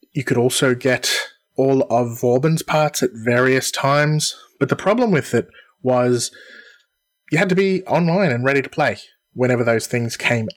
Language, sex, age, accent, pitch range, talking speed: English, male, 20-39, Australian, 120-160 Hz, 170 wpm